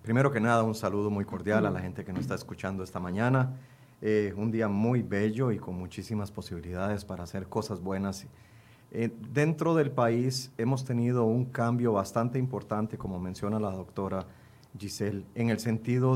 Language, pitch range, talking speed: Spanish, 105-125 Hz, 175 wpm